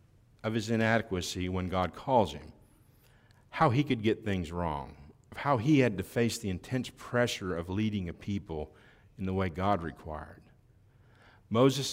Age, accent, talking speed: 50-69, American, 160 wpm